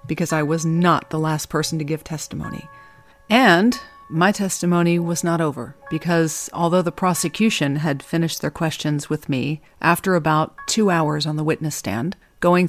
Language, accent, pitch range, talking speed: English, American, 155-195 Hz, 165 wpm